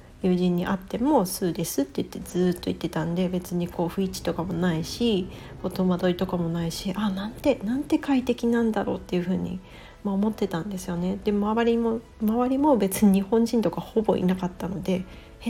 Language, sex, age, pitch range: Japanese, female, 40-59, 180-235 Hz